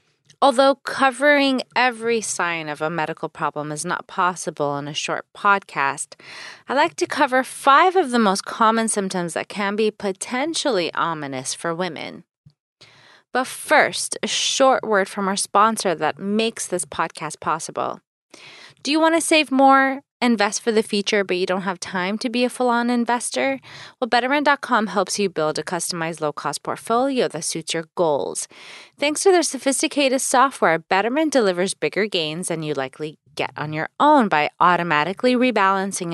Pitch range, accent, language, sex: 170-270 Hz, American, English, female